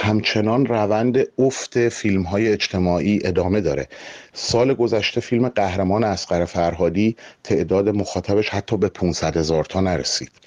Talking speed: 120 wpm